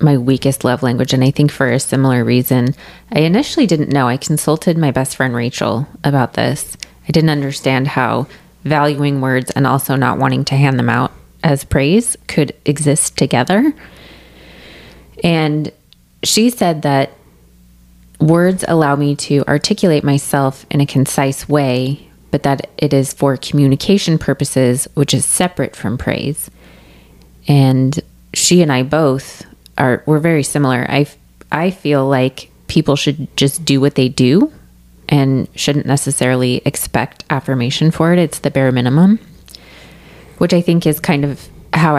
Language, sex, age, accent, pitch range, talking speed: English, female, 20-39, American, 130-155 Hz, 150 wpm